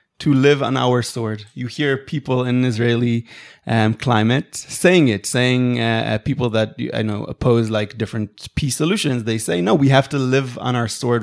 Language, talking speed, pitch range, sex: English, 190 wpm, 110-135 Hz, male